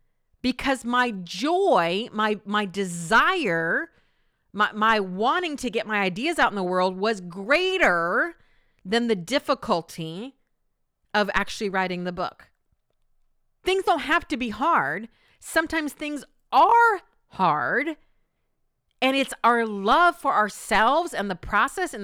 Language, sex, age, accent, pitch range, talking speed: English, female, 40-59, American, 205-300 Hz, 130 wpm